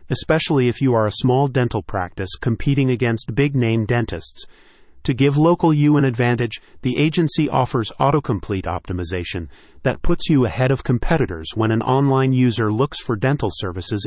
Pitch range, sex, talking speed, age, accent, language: 110-140 Hz, male, 160 wpm, 40-59, American, English